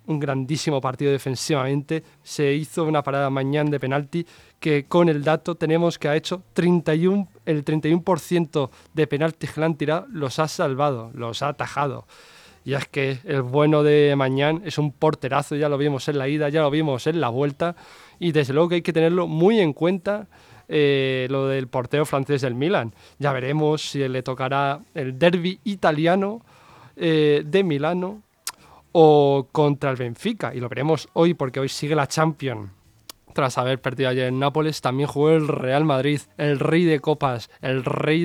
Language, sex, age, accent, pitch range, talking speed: Spanish, male, 20-39, Spanish, 135-160 Hz, 175 wpm